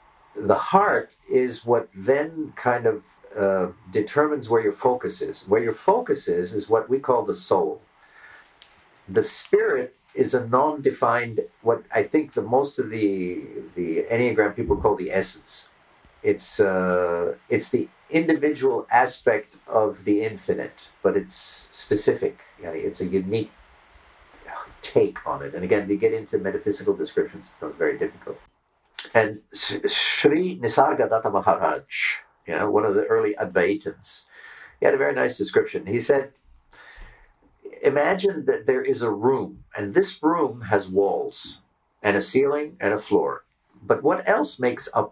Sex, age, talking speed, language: male, 50-69, 150 wpm, English